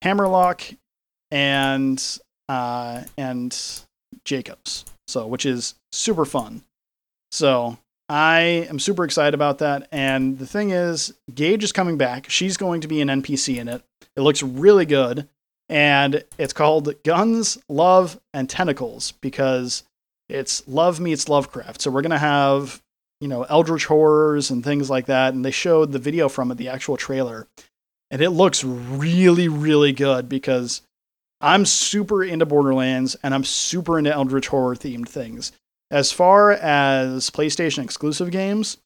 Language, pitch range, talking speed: English, 130-165 Hz, 145 wpm